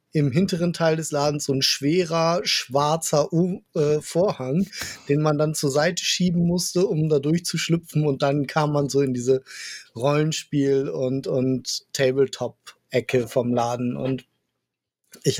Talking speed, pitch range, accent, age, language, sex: 145 wpm, 135-155 Hz, German, 20-39, German, male